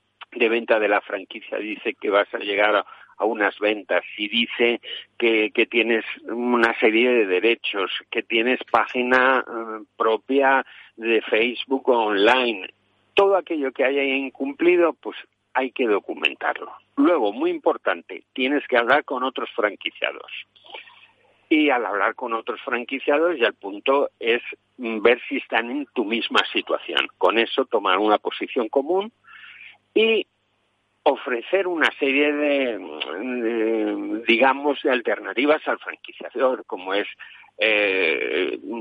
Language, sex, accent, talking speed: Spanish, male, Spanish, 130 wpm